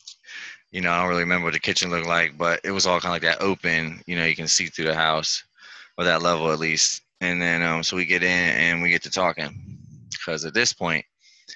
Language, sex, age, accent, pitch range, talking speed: English, male, 20-39, American, 85-100 Hz, 255 wpm